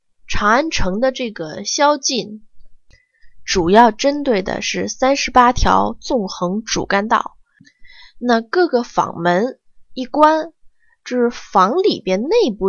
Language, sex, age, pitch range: Chinese, female, 20-39, 190-260 Hz